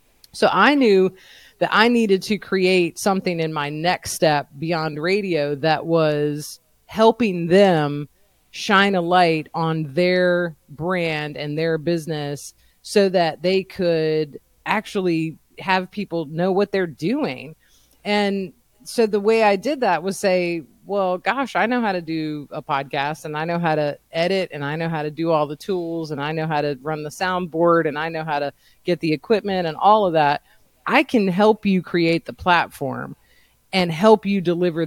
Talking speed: 175 wpm